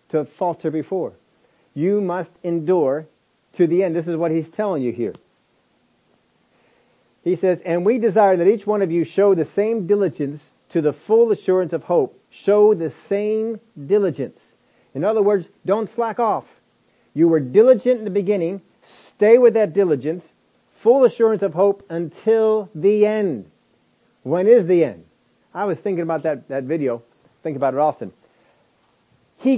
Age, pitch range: 40-59, 160-210 Hz